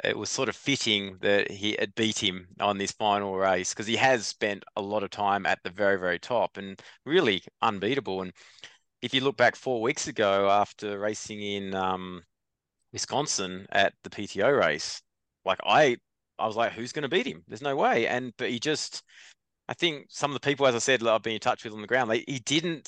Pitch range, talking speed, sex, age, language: 95-125 Hz, 225 wpm, male, 20-39, English